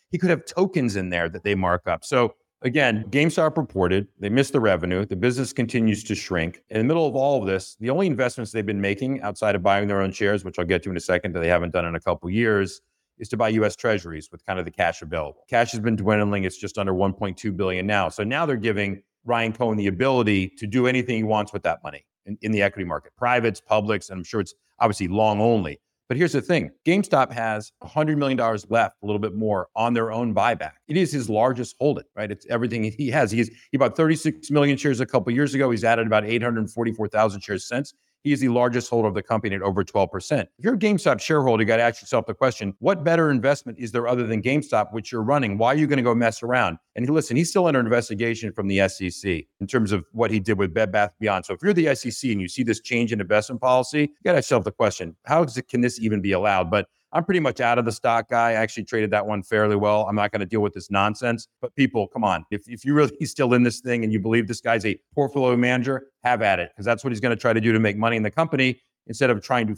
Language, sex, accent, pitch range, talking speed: English, male, American, 105-130 Hz, 265 wpm